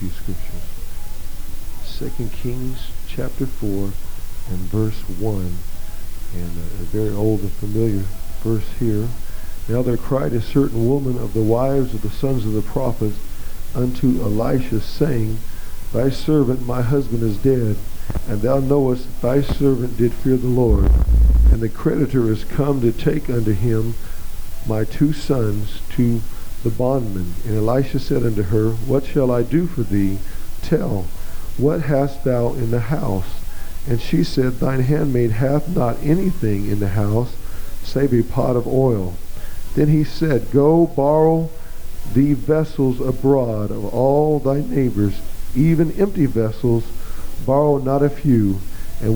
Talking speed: 145 wpm